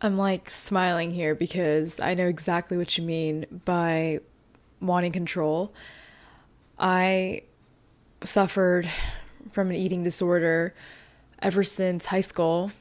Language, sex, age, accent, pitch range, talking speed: English, female, 20-39, American, 160-180 Hz, 110 wpm